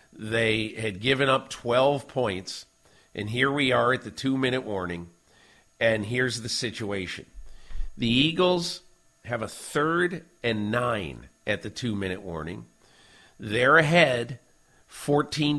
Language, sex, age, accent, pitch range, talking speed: English, male, 50-69, American, 115-145 Hz, 130 wpm